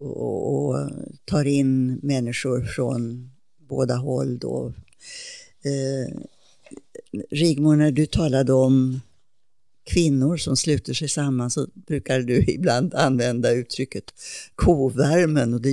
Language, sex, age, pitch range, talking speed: English, female, 60-79, 130-150 Hz, 105 wpm